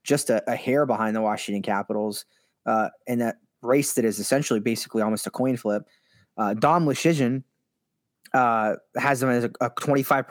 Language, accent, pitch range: English, American, 120-175 Hz